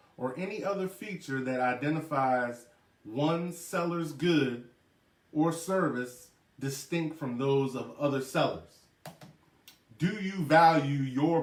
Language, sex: English, male